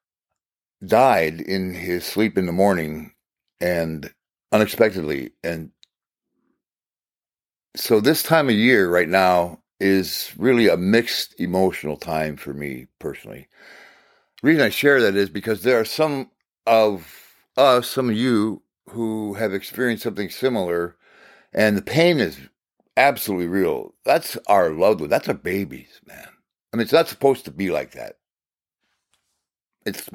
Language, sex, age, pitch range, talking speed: English, male, 60-79, 90-125 Hz, 140 wpm